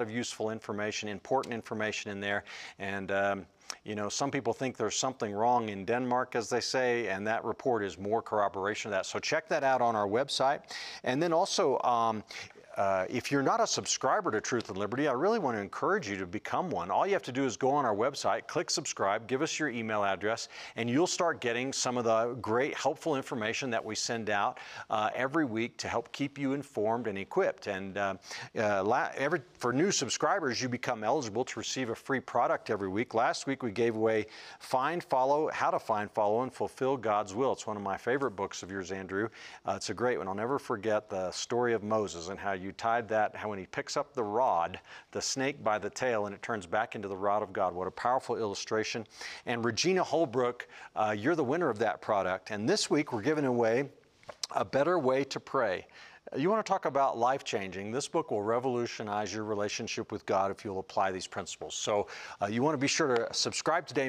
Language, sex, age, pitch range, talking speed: English, male, 50-69, 105-130 Hz, 220 wpm